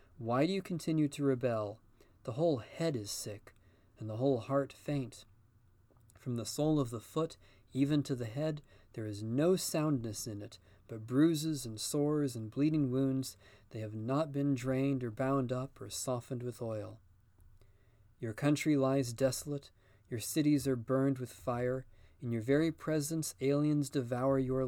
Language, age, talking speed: English, 40-59, 165 wpm